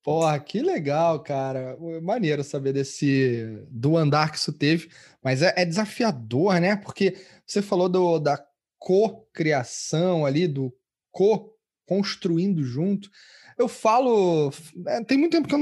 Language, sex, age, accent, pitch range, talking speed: Portuguese, male, 20-39, Brazilian, 150-195 Hz, 130 wpm